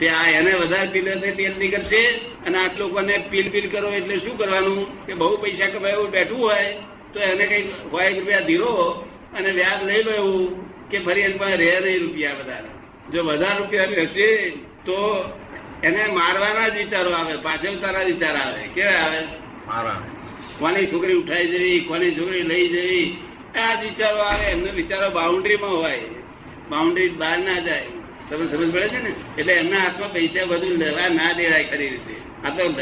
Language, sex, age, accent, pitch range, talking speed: English, male, 50-69, Indian, 160-200 Hz, 75 wpm